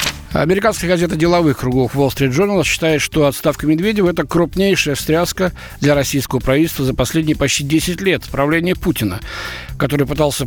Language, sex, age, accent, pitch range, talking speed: Russian, male, 60-79, native, 125-170 Hz, 150 wpm